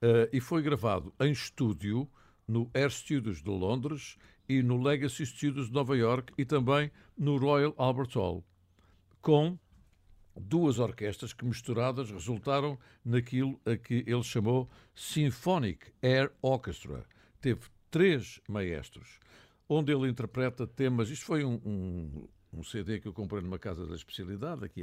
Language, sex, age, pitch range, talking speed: Portuguese, male, 60-79, 100-130 Hz, 145 wpm